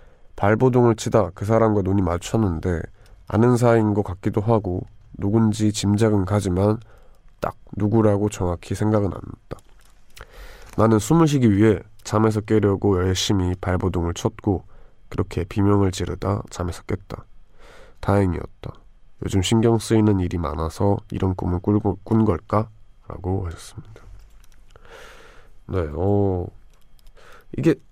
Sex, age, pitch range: male, 20-39, 90-110 Hz